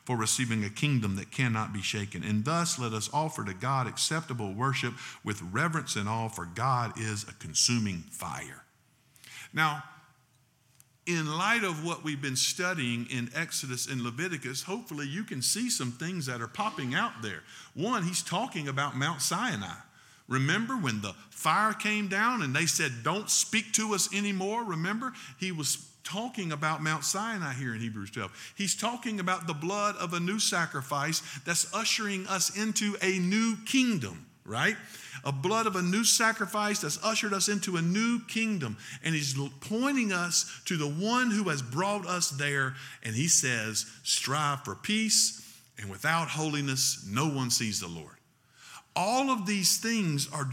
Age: 50-69